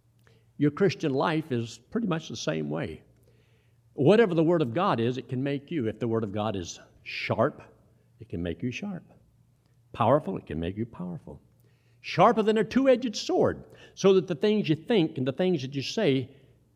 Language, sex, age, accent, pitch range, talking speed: English, male, 60-79, American, 115-150 Hz, 195 wpm